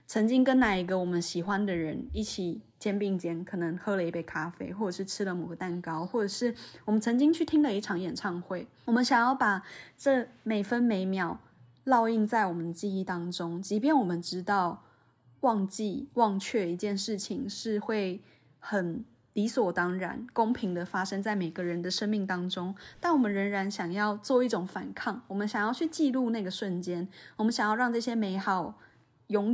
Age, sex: 20-39, female